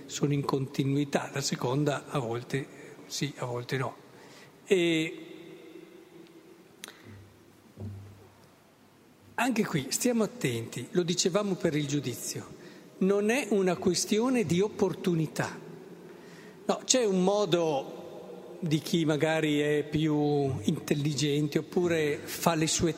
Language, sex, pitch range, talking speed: Italian, male, 160-210 Hz, 110 wpm